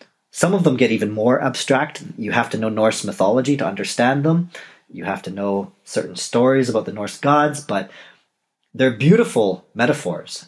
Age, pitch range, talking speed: 40-59, 105-150 Hz, 170 wpm